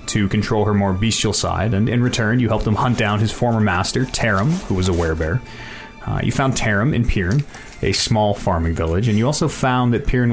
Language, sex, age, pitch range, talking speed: English, male, 30-49, 100-125 Hz, 220 wpm